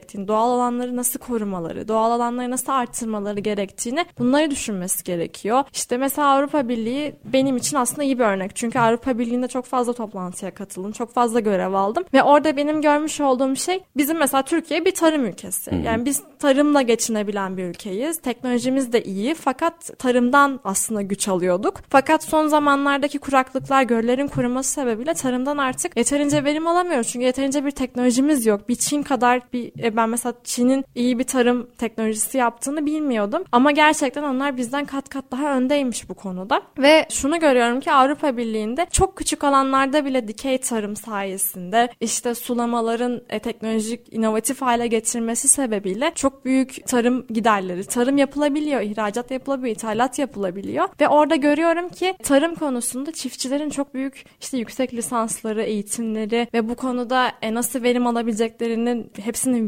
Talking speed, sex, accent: 150 wpm, female, native